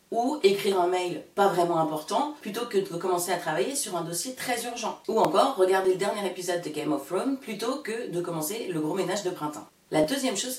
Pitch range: 175-250 Hz